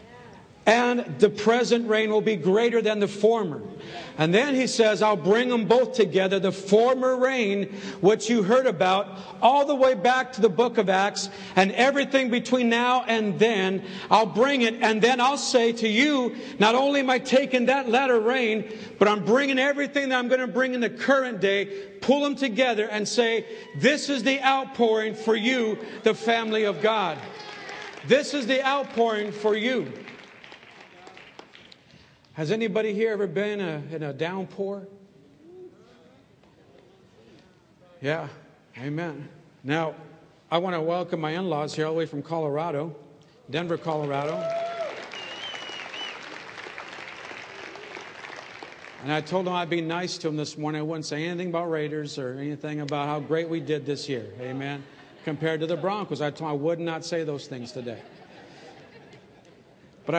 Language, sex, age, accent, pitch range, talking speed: English, male, 50-69, American, 160-245 Hz, 160 wpm